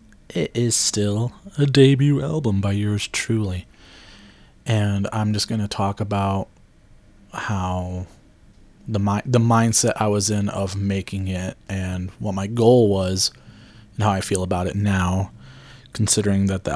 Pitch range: 100-125 Hz